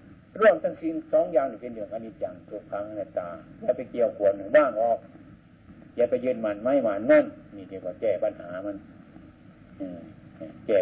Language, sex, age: Thai, male, 60-79